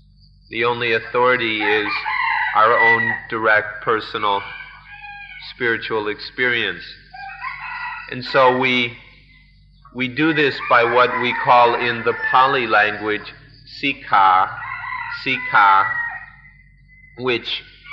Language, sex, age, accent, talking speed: English, male, 40-59, American, 90 wpm